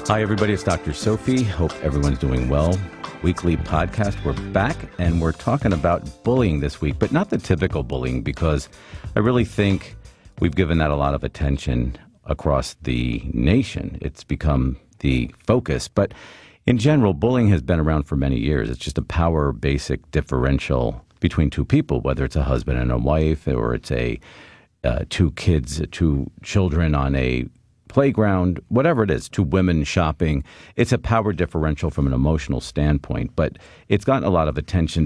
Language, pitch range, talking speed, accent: English, 70-95 Hz, 175 wpm, American